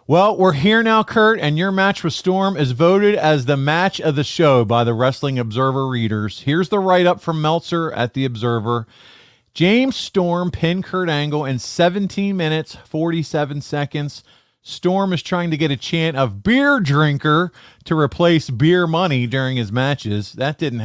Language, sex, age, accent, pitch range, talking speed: English, male, 40-59, American, 120-165 Hz, 175 wpm